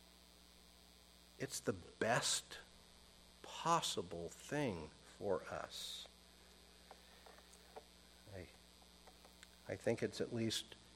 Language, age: English, 60-79